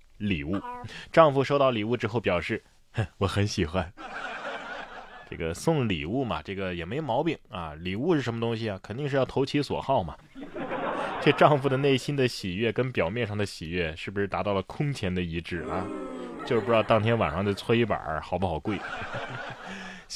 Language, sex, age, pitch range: Chinese, male, 20-39, 95-140 Hz